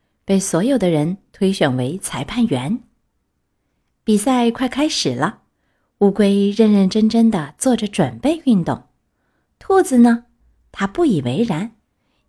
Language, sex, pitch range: Chinese, female, 185-255 Hz